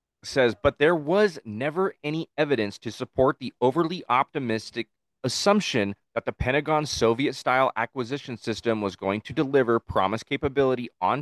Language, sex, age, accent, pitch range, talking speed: English, male, 30-49, American, 115-150 Hz, 140 wpm